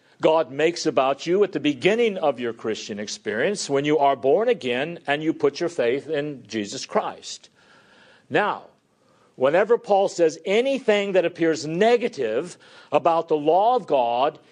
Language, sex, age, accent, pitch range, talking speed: English, male, 50-69, American, 155-205 Hz, 155 wpm